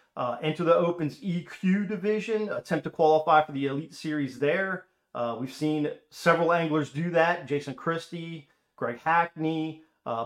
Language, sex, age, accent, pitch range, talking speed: English, male, 40-59, American, 130-170 Hz, 150 wpm